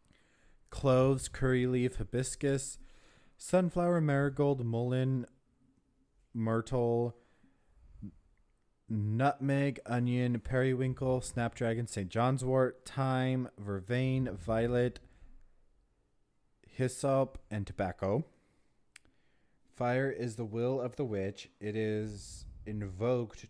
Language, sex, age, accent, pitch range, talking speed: English, male, 30-49, American, 105-130 Hz, 80 wpm